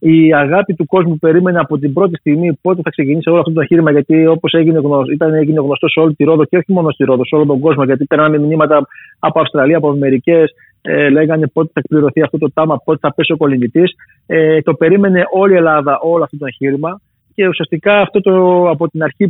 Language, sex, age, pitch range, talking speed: Greek, male, 30-49, 150-180 Hz, 225 wpm